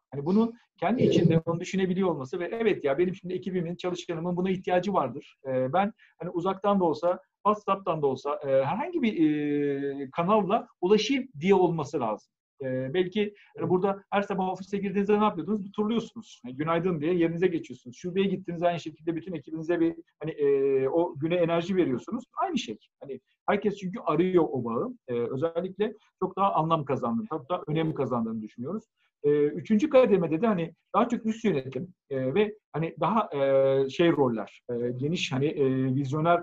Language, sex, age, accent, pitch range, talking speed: Turkish, male, 50-69, native, 140-190 Hz, 150 wpm